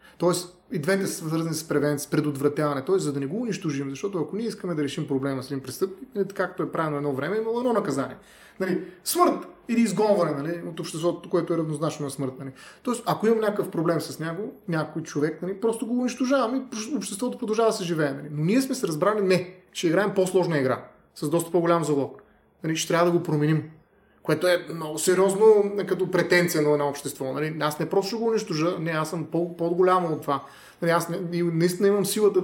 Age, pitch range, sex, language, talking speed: 30-49, 150-190 Hz, male, Bulgarian, 205 wpm